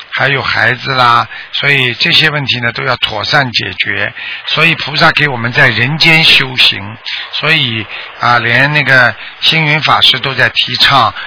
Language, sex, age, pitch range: Chinese, male, 50-69, 130-170 Hz